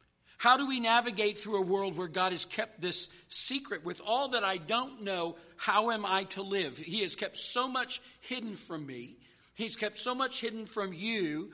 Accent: American